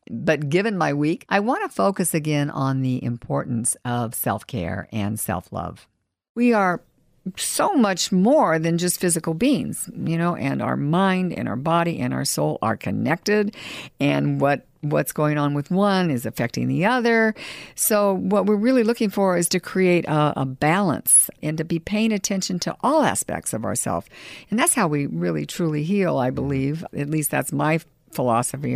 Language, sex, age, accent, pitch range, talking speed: English, female, 60-79, American, 130-180 Hz, 175 wpm